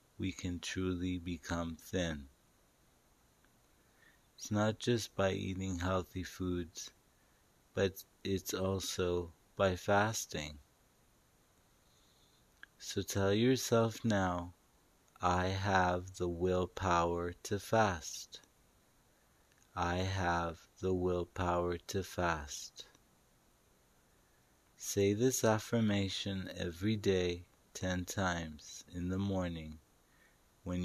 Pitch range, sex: 90-100 Hz, male